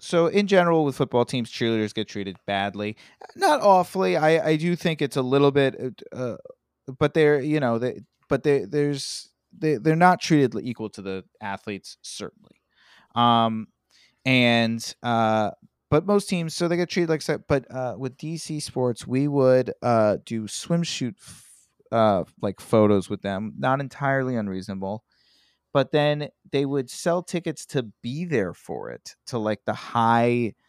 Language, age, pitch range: English, 30-49, 110-155 Hz